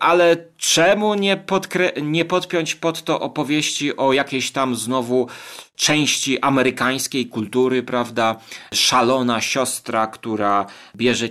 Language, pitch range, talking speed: Polish, 125-170 Hz, 105 wpm